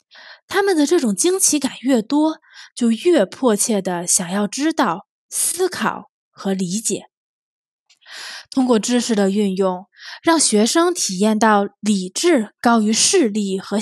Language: Chinese